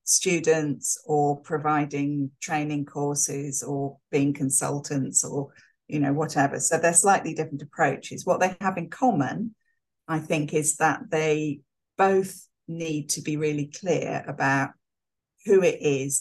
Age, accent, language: 40-59, British, English